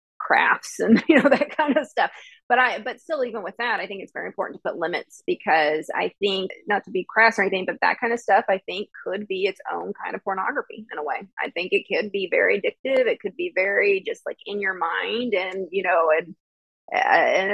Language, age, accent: English, 30-49, American